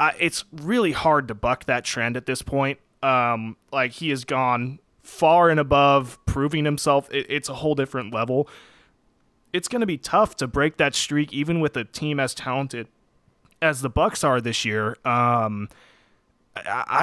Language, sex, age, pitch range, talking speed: English, male, 20-39, 130-165 Hz, 175 wpm